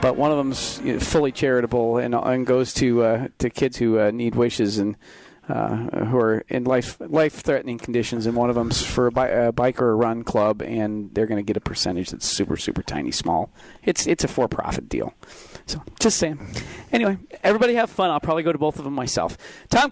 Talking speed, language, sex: 220 wpm, English, male